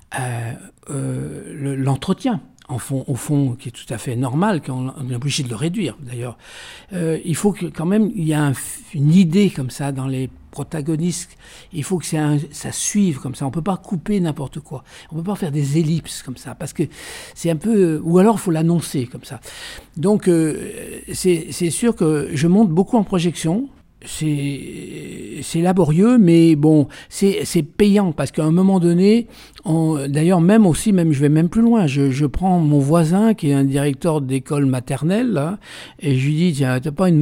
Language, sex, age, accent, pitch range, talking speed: French, male, 60-79, French, 140-185 Hz, 210 wpm